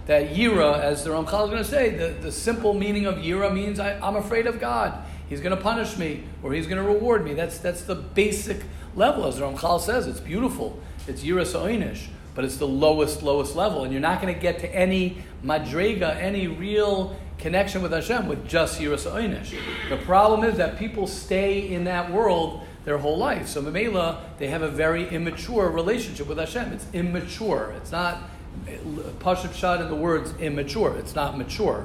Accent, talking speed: American, 200 wpm